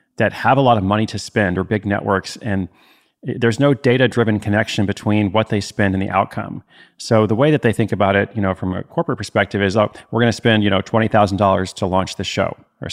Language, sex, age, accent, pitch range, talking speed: English, male, 30-49, American, 95-115 Hz, 235 wpm